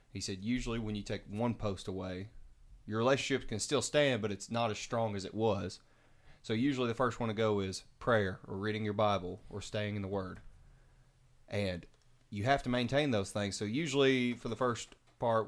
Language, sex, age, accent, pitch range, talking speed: English, male, 30-49, American, 105-130 Hz, 205 wpm